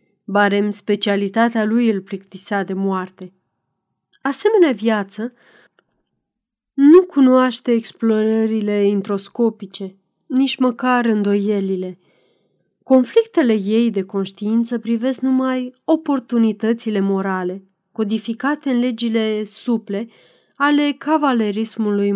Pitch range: 200-255 Hz